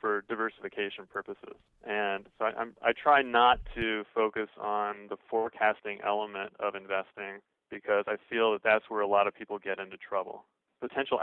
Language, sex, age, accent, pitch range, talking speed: English, male, 20-39, American, 105-115 Hz, 170 wpm